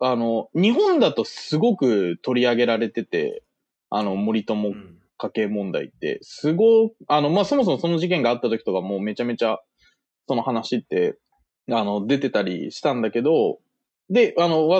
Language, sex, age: Japanese, male, 20-39